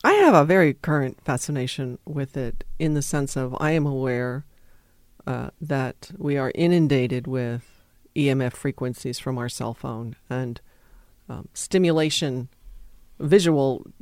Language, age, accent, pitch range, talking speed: English, 40-59, American, 125-155 Hz, 135 wpm